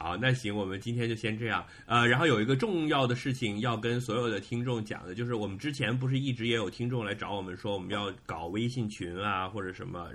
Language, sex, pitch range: Chinese, male, 105-135 Hz